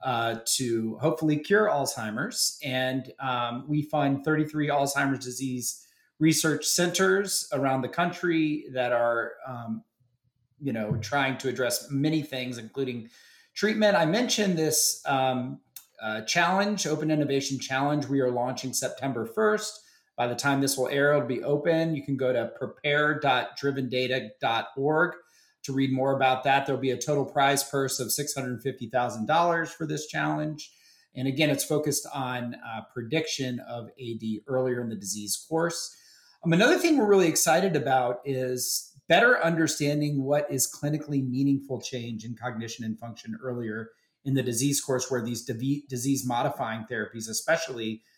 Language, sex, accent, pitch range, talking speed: English, male, American, 125-155 Hz, 145 wpm